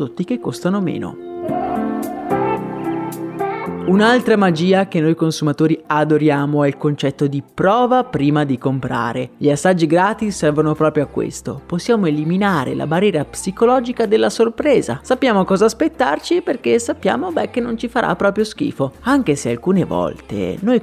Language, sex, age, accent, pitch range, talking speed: Italian, male, 30-49, native, 145-205 Hz, 140 wpm